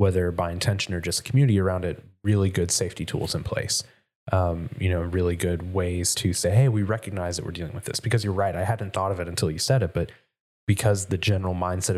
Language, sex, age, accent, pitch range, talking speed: English, male, 20-39, American, 95-115 Hz, 235 wpm